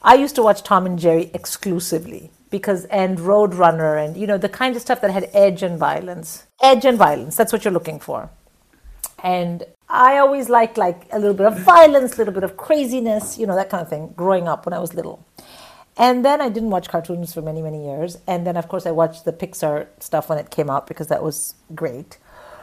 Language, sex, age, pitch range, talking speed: English, female, 50-69, 170-240 Hz, 225 wpm